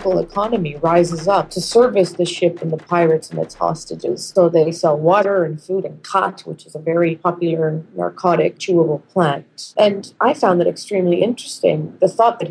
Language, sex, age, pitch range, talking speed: English, female, 30-49, 165-190 Hz, 180 wpm